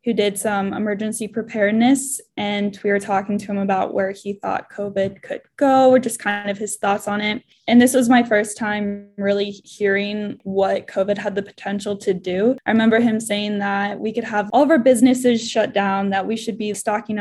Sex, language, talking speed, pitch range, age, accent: female, English, 210 wpm, 200-235 Hz, 10-29, American